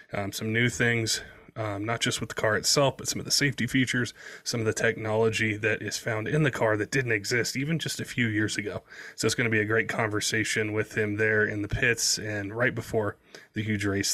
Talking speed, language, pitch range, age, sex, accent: 240 wpm, English, 105-120 Hz, 20-39, male, American